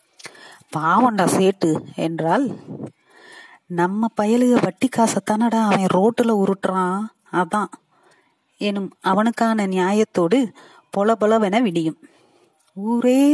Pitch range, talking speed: 185-245 Hz, 65 wpm